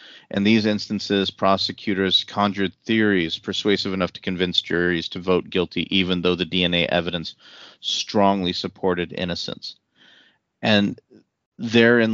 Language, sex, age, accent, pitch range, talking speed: English, male, 30-49, American, 90-100 Hz, 120 wpm